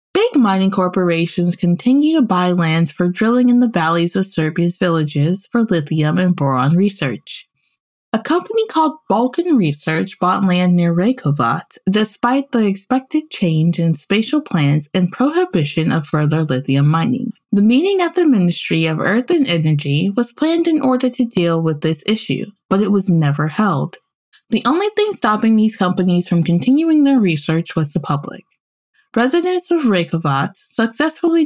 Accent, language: American, English